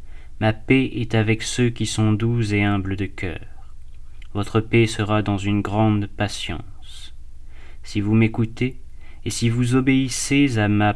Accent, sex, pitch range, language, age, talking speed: French, male, 95-120 Hz, French, 30-49, 155 wpm